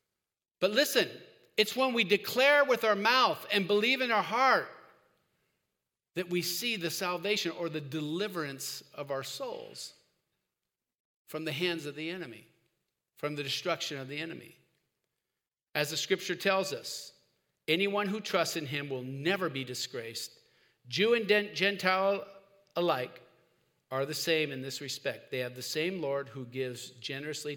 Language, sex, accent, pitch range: English, male, American, 135-185 Hz